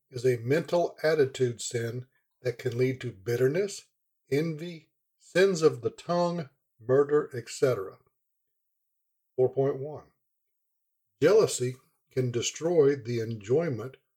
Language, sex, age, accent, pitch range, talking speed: English, male, 60-79, American, 125-155 Hz, 95 wpm